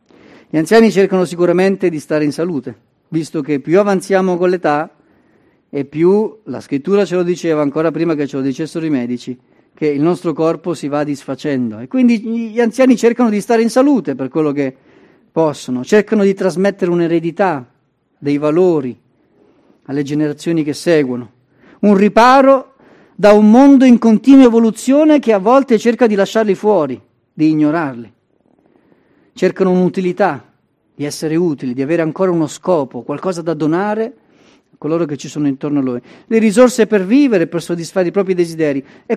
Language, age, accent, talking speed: Italian, 40-59, native, 165 wpm